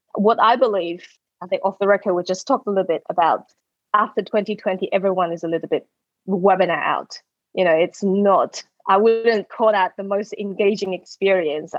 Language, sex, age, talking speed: English, female, 20-39, 185 wpm